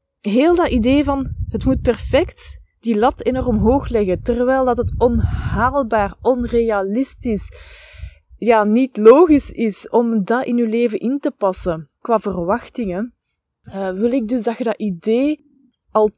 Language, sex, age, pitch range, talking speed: Dutch, female, 20-39, 205-270 Hz, 150 wpm